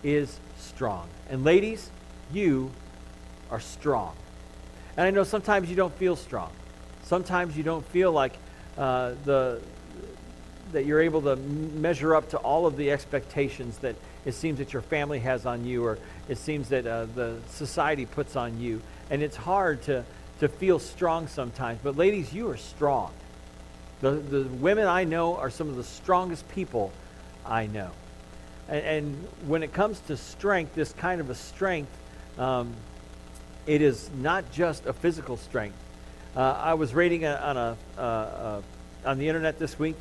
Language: English